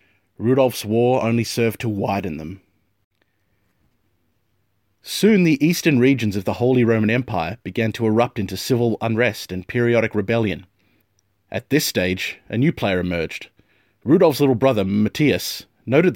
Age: 30-49